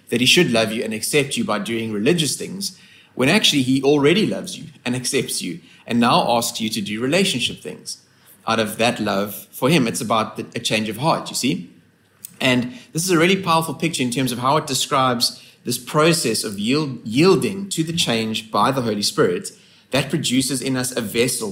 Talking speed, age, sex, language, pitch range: 205 wpm, 30-49, male, English, 115-150 Hz